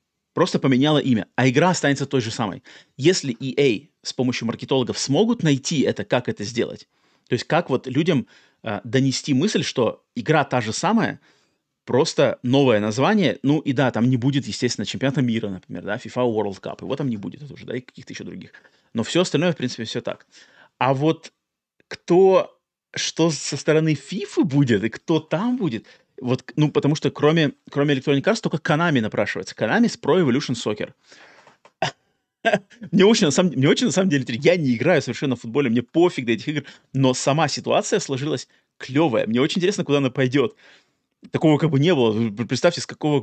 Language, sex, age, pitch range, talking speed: Russian, male, 30-49, 125-155 Hz, 180 wpm